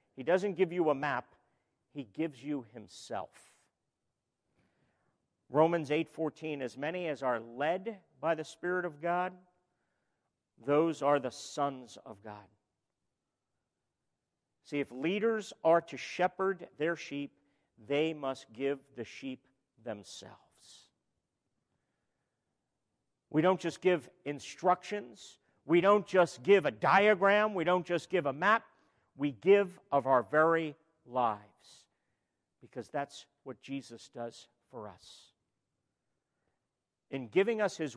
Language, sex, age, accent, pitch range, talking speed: English, male, 50-69, American, 140-195 Hz, 120 wpm